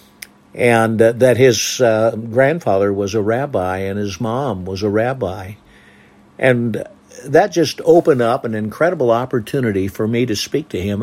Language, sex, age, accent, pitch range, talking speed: English, male, 60-79, American, 105-120 Hz, 150 wpm